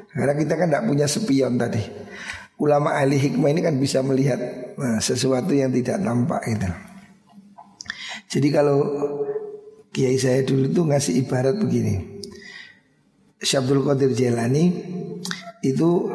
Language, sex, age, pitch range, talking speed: Indonesian, male, 50-69, 135-185 Hz, 125 wpm